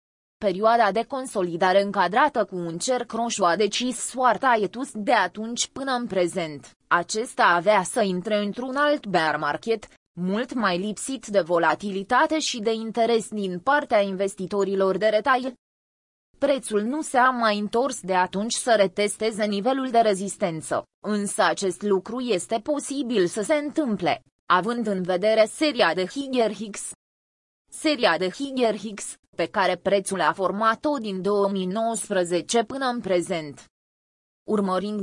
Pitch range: 185-235 Hz